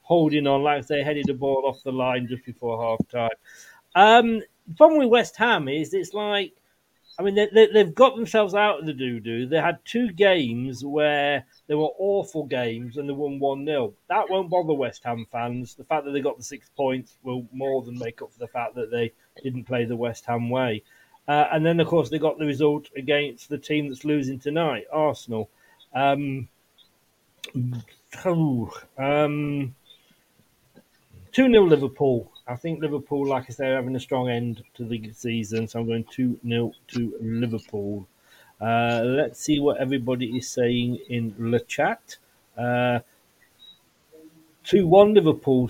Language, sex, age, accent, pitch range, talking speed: English, male, 30-49, British, 120-160 Hz, 165 wpm